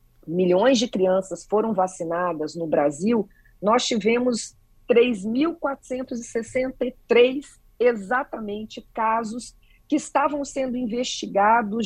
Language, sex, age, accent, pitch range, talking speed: Portuguese, female, 40-59, Brazilian, 180-250 Hz, 80 wpm